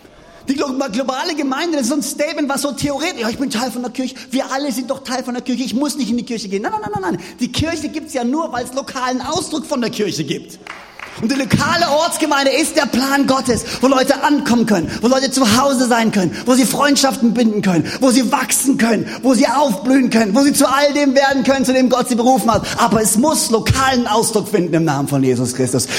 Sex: male